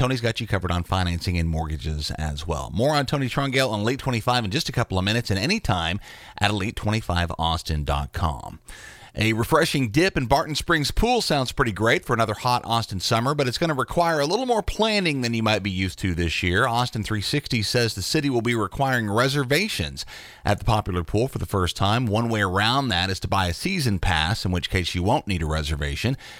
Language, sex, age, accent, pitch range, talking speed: English, male, 40-59, American, 95-140 Hz, 215 wpm